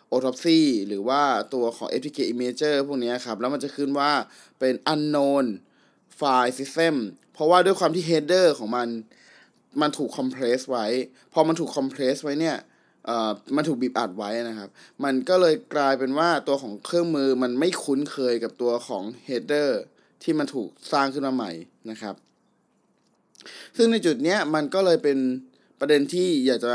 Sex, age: male, 20-39